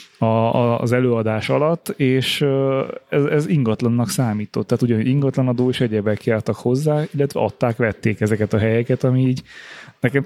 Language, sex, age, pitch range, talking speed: Hungarian, male, 30-49, 110-125 Hz, 160 wpm